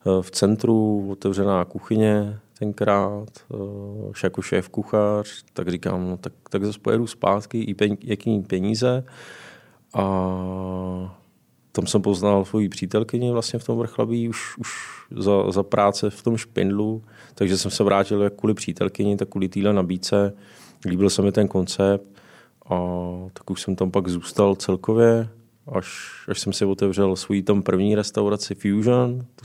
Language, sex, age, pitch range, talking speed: Czech, male, 20-39, 95-110 Hz, 150 wpm